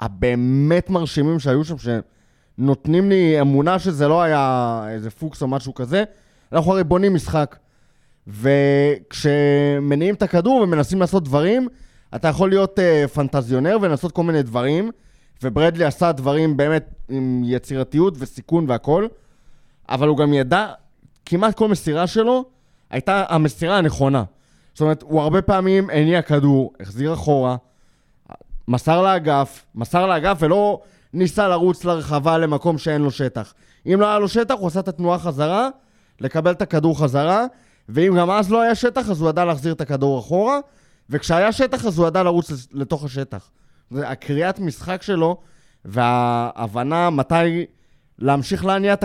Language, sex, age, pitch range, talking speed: Hebrew, male, 20-39, 140-190 Hz, 145 wpm